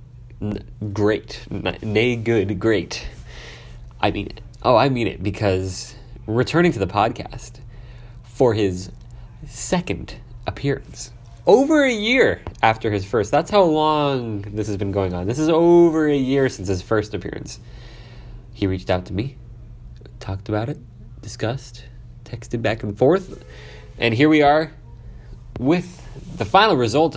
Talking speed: 140 wpm